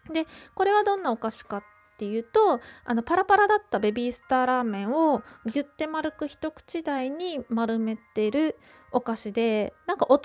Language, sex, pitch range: Japanese, female, 230-345 Hz